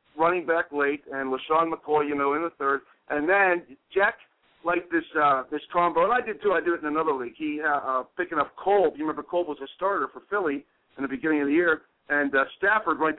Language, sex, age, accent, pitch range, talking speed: English, male, 50-69, American, 140-195 Hz, 240 wpm